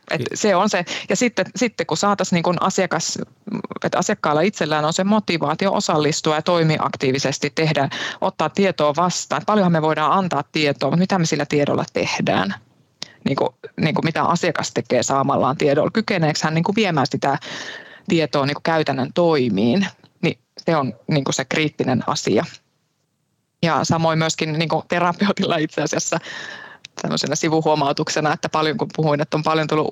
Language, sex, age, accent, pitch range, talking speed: Finnish, female, 20-39, native, 150-185 Hz, 150 wpm